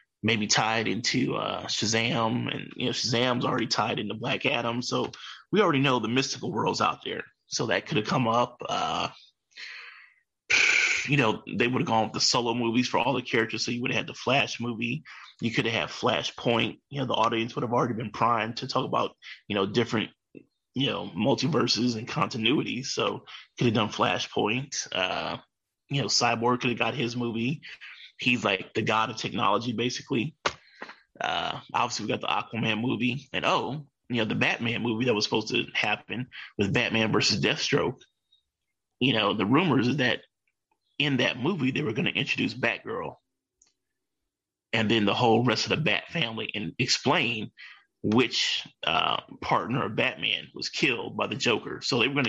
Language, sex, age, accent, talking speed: English, male, 20-39, American, 185 wpm